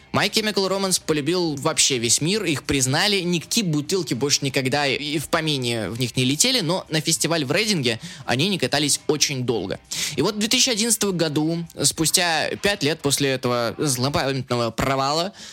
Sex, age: male, 20-39